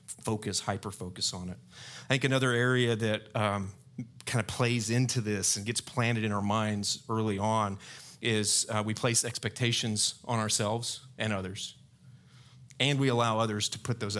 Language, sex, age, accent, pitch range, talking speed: English, male, 40-59, American, 105-130 Hz, 165 wpm